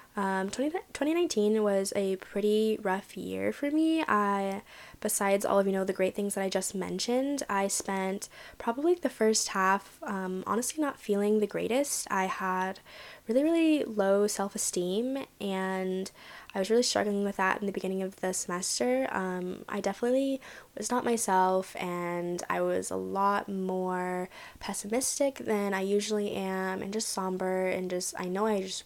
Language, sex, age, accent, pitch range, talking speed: English, female, 10-29, American, 185-215 Hz, 165 wpm